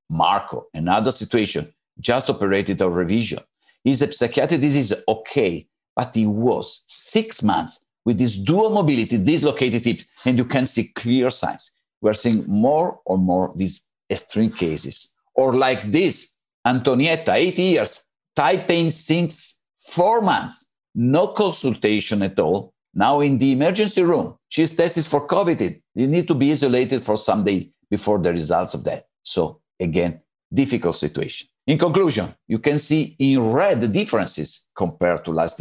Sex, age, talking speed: male, 50-69, 155 wpm